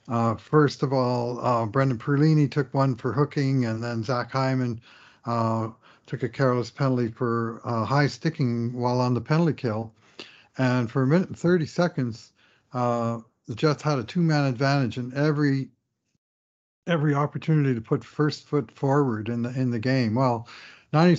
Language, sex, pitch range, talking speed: English, male, 120-150 Hz, 165 wpm